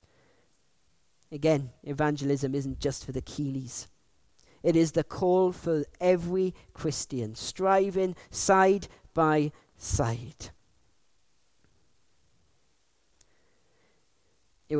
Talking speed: 75 wpm